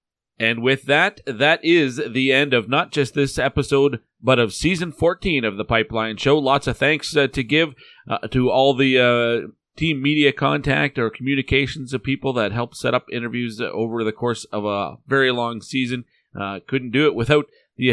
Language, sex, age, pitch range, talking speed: English, male, 40-59, 110-135 Hz, 190 wpm